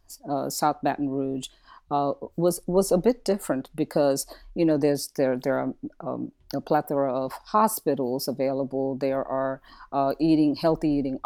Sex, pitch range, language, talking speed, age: female, 140-175 Hz, English, 155 wpm, 40-59